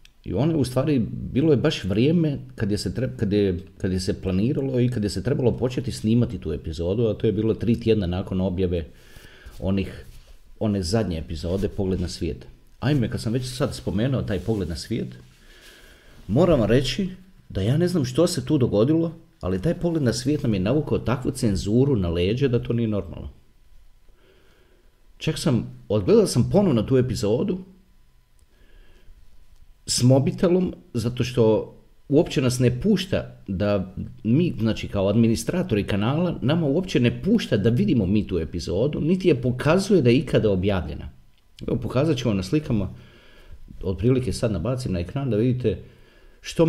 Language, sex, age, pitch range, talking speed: Croatian, male, 40-59, 95-135 Hz, 170 wpm